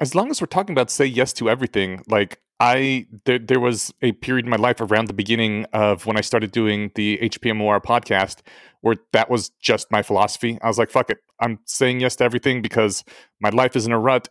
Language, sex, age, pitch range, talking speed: English, male, 30-49, 110-135 Hz, 225 wpm